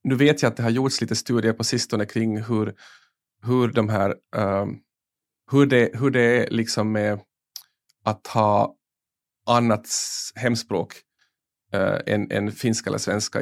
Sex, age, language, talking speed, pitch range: male, 30-49, Swedish, 150 wpm, 110-120 Hz